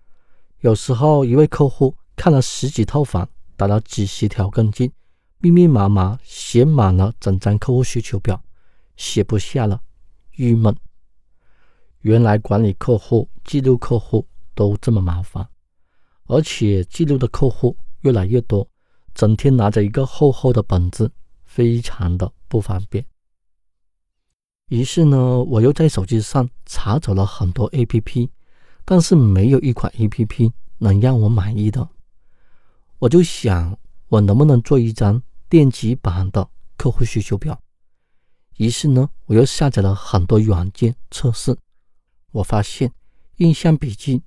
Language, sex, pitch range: Chinese, male, 95-125 Hz